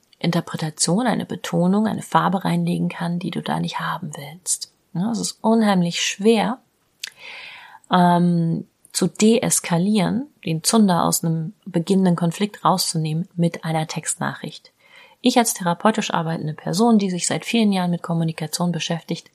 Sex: female